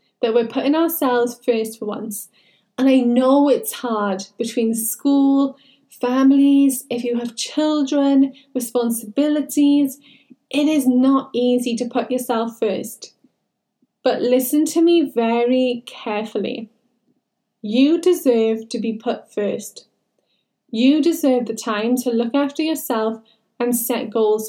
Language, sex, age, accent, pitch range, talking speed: English, female, 10-29, British, 225-270 Hz, 125 wpm